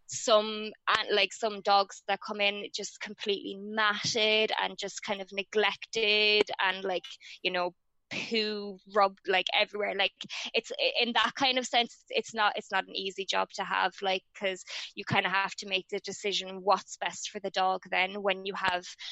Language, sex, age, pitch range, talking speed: English, female, 20-39, 190-215 Hz, 185 wpm